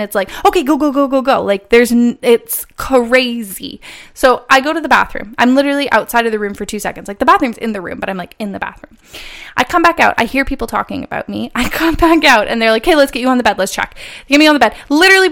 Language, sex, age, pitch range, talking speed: English, female, 20-39, 215-280 Hz, 280 wpm